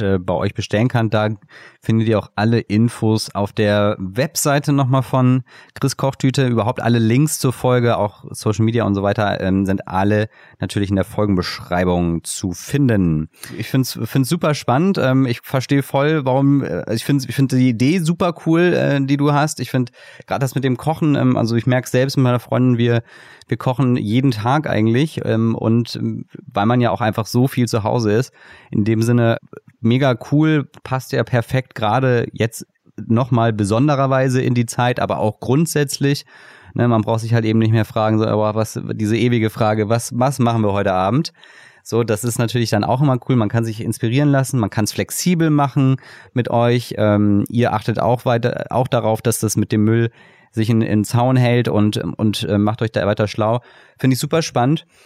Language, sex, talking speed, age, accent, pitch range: German, male, 185 wpm, 30-49, German, 110-135 Hz